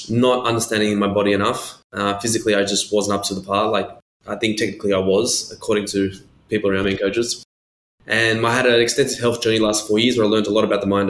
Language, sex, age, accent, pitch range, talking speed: English, male, 20-39, Australian, 105-115 Hz, 245 wpm